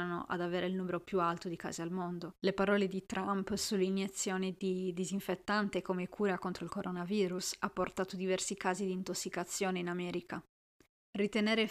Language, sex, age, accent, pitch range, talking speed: Italian, female, 20-39, native, 180-195 Hz, 160 wpm